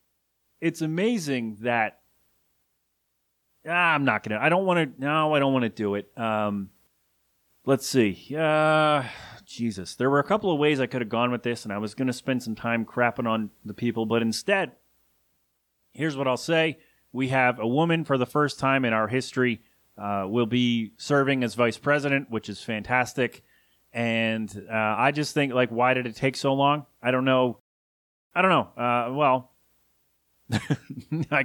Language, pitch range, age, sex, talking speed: English, 110-145 Hz, 30-49, male, 185 wpm